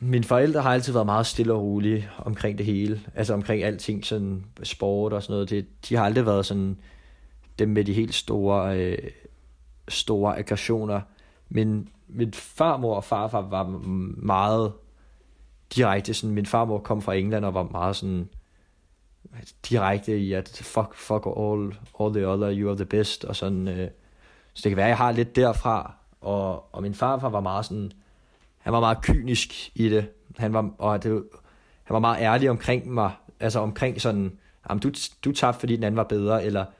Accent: native